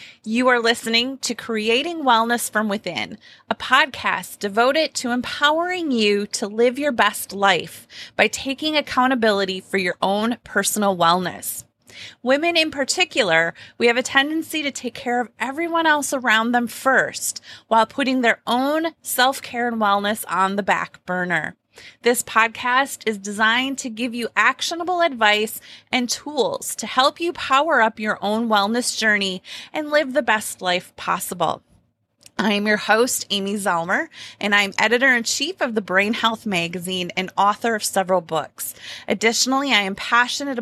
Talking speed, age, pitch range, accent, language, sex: 150 wpm, 30-49, 205-265 Hz, American, English, female